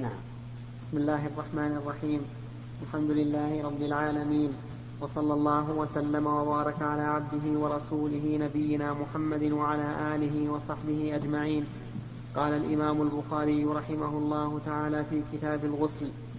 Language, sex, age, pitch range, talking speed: Arabic, male, 30-49, 150-155 Hz, 110 wpm